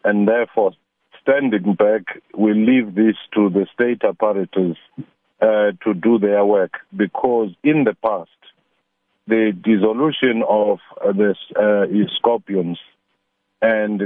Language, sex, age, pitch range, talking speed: English, male, 50-69, 100-120 Hz, 110 wpm